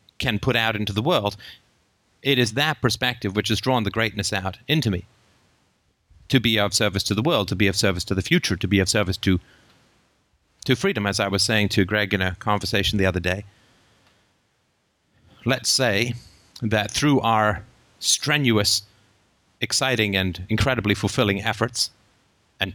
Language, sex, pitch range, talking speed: English, male, 100-120 Hz, 165 wpm